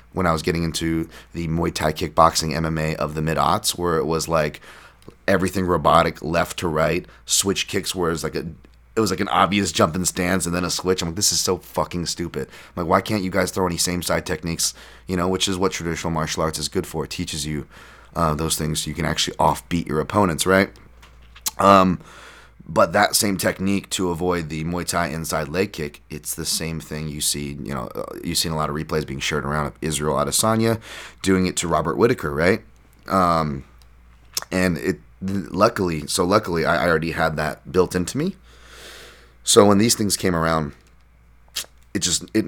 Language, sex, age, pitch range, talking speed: English, male, 30-49, 75-95 Hz, 205 wpm